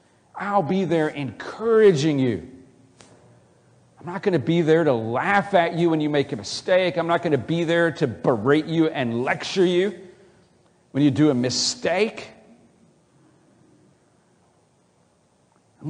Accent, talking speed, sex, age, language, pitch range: American, 145 wpm, male, 50-69, English, 135-195 Hz